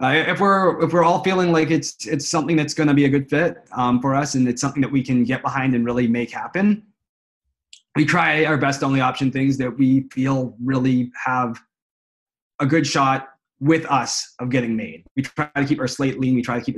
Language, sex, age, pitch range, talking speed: English, male, 20-39, 130-150 Hz, 230 wpm